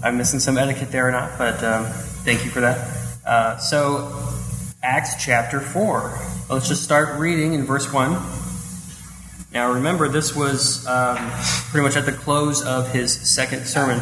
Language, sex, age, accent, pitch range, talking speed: English, male, 20-39, American, 115-145 Hz, 165 wpm